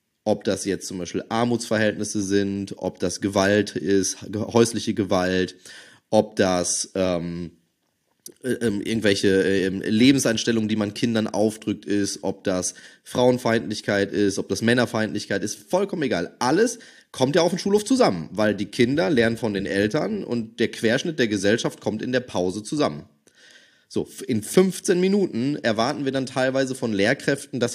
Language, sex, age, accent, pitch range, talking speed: German, male, 20-39, German, 105-140 Hz, 145 wpm